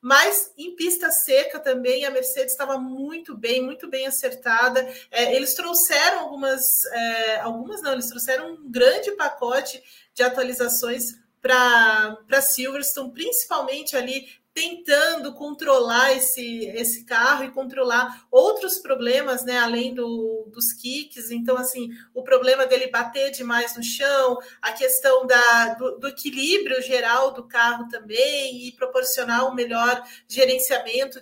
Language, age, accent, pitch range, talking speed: Portuguese, 30-49, Brazilian, 245-295 Hz, 130 wpm